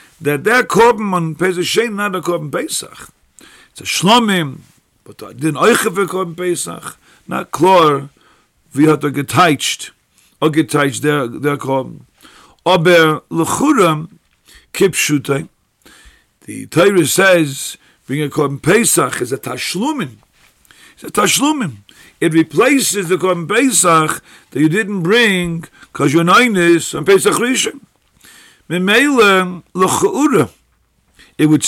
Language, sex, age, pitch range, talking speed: English, male, 50-69, 150-200 Hz, 120 wpm